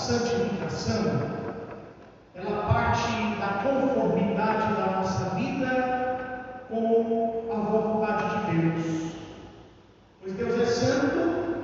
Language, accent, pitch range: Portuguese, Brazilian, 190-270 Hz